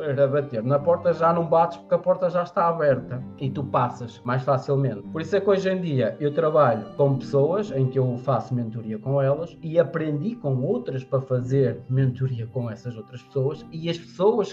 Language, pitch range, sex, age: Portuguese, 125-145 Hz, male, 20-39